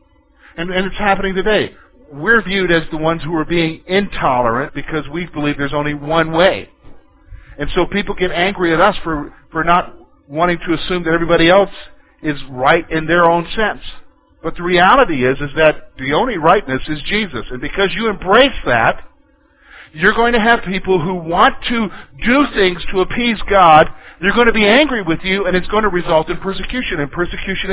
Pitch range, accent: 140-195 Hz, American